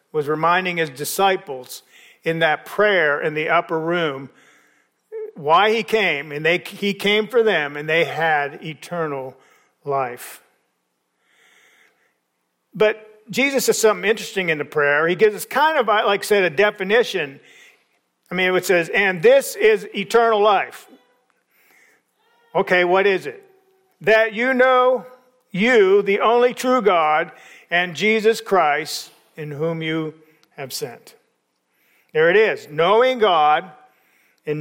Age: 50-69